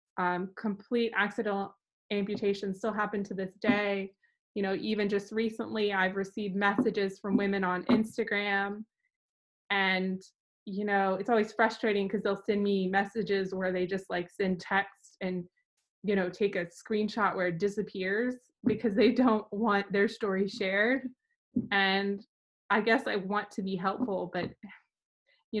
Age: 20-39